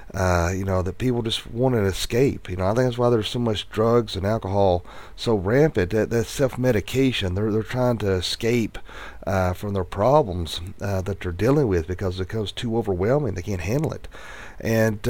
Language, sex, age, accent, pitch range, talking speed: English, male, 40-59, American, 95-120 Hz, 205 wpm